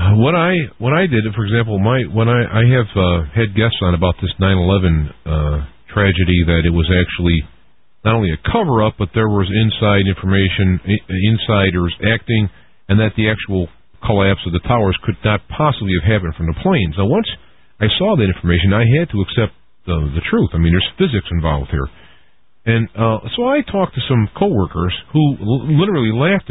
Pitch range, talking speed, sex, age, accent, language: 90-125 Hz, 195 wpm, male, 50-69, American, English